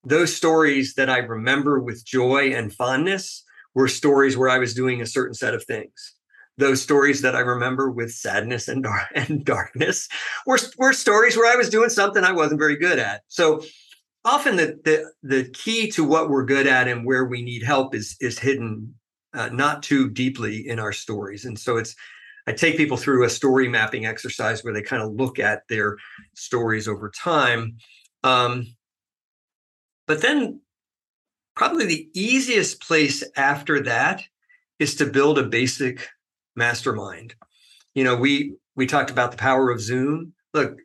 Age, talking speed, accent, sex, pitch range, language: 50-69, 170 wpm, American, male, 115-150 Hz, English